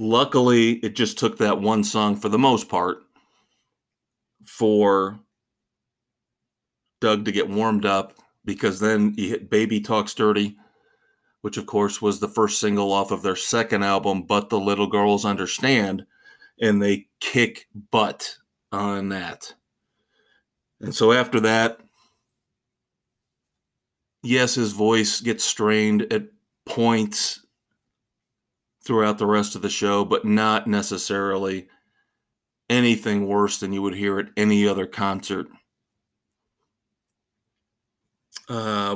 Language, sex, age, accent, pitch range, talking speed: English, male, 40-59, American, 100-115 Hz, 120 wpm